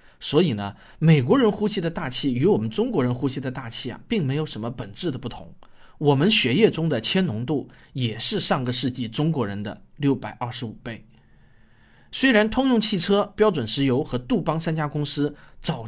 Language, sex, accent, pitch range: Chinese, male, native, 125-190 Hz